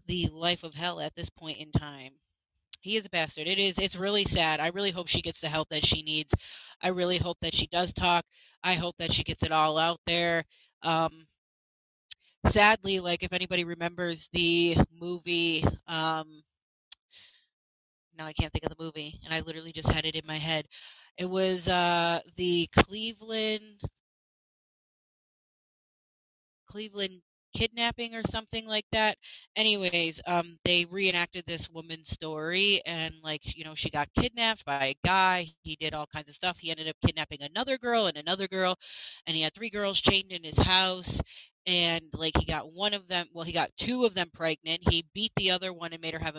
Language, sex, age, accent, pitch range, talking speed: English, female, 30-49, American, 155-185 Hz, 185 wpm